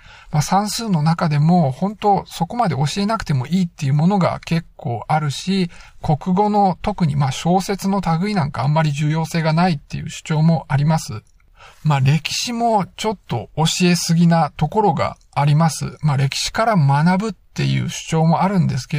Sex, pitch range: male, 145-190 Hz